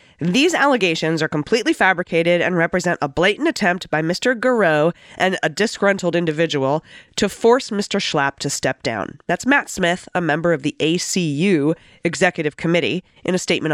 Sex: female